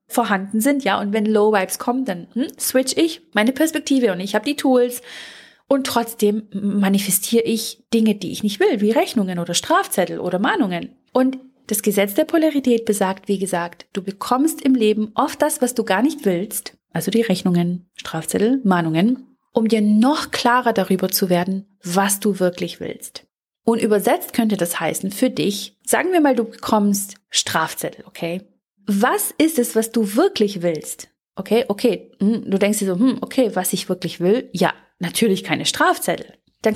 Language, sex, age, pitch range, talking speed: German, female, 30-49, 190-245 Hz, 170 wpm